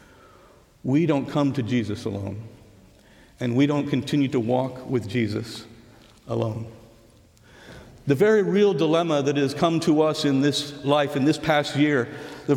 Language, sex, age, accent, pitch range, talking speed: English, male, 50-69, American, 130-155 Hz, 155 wpm